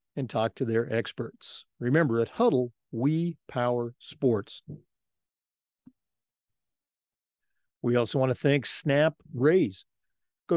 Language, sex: English, male